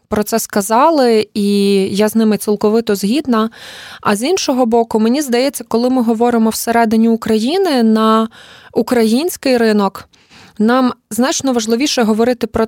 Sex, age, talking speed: female, 20-39, 130 wpm